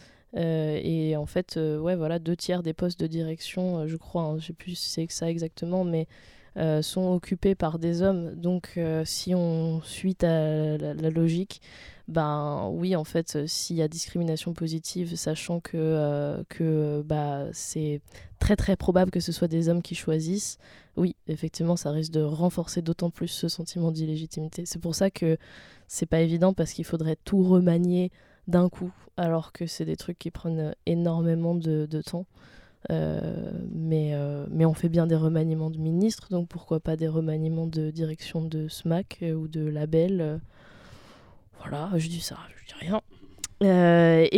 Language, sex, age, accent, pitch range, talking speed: French, female, 20-39, French, 160-180 Hz, 185 wpm